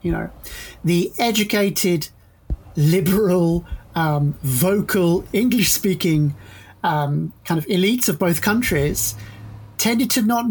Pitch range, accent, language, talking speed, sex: 145-190 Hz, British, English, 110 wpm, male